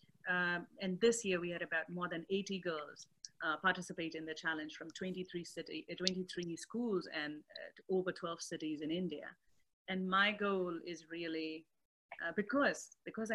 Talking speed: 170 wpm